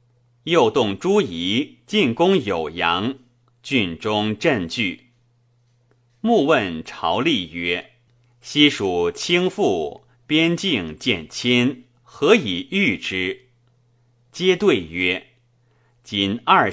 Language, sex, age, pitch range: Chinese, male, 30-49, 120-140 Hz